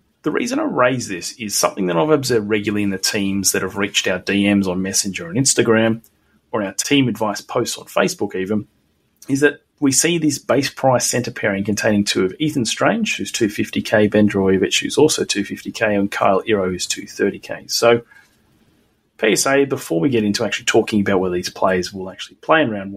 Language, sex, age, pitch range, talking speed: English, male, 30-49, 100-125 Hz, 195 wpm